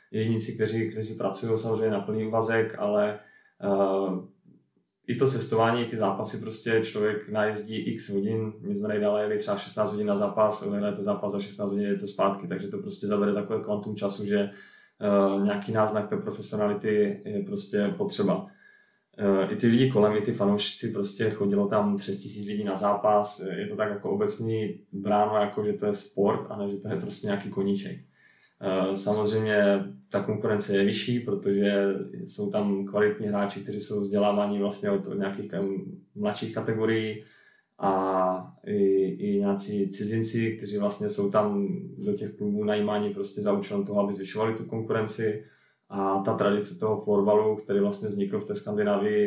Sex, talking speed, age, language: male, 165 wpm, 20-39, Czech